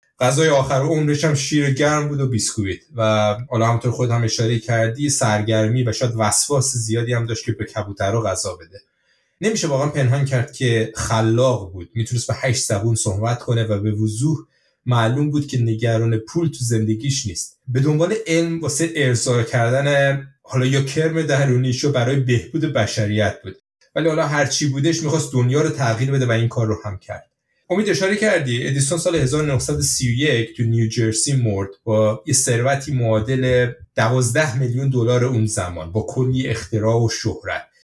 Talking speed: 165 wpm